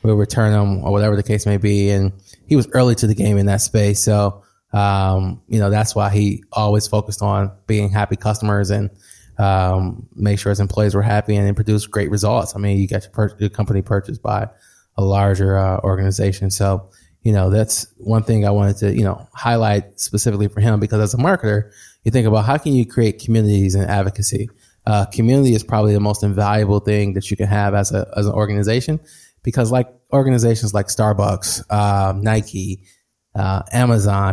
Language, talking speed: English, 200 wpm